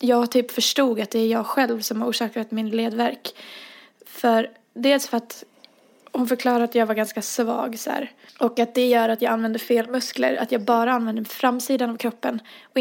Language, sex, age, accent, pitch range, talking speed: Swedish, female, 20-39, native, 225-245 Hz, 200 wpm